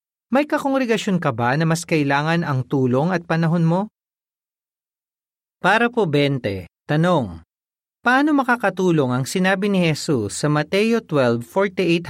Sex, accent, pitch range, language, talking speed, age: male, native, 140-205 Hz, Filipino, 125 wpm, 40-59